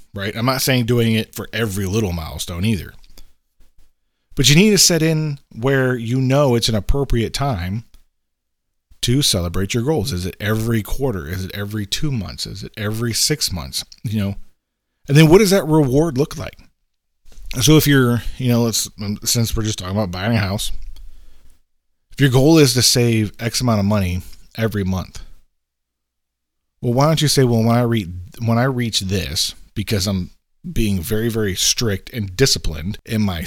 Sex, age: male, 40-59